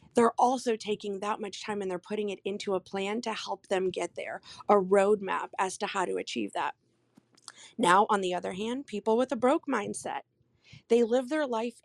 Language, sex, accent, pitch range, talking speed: English, female, American, 205-265 Hz, 205 wpm